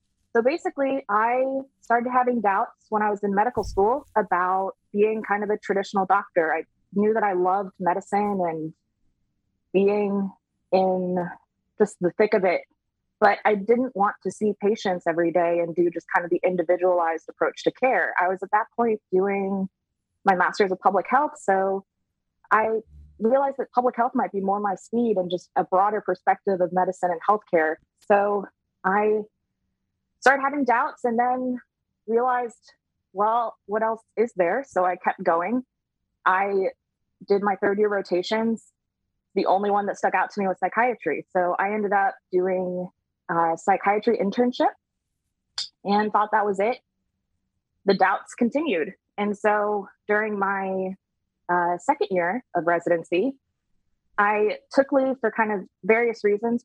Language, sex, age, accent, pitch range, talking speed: English, female, 20-39, American, 185-225 Hz, 160 wpm